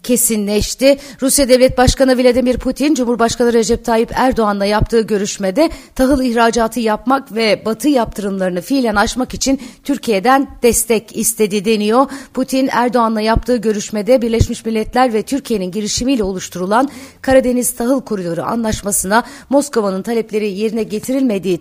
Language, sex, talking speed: Turkish, female, 120 wpm